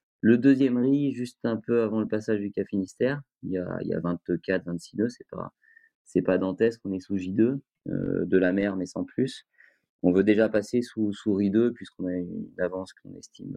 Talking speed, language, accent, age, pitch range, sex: 215 wpm, French, French, 30-49, 95-120 Hz, male